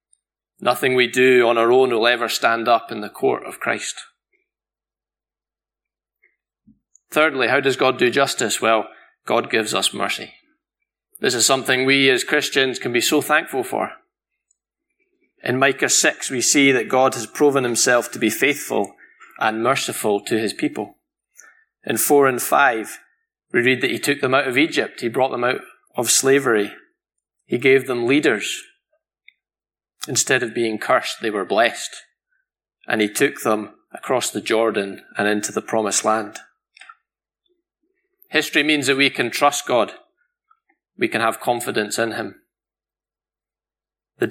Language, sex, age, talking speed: English, male, 20-39, 150 wpm